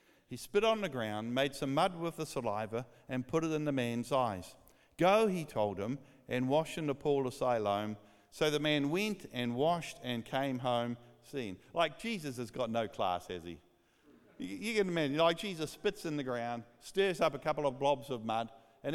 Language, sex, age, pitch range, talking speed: English, male, 50-69, 135-195 Hz, 205 wpm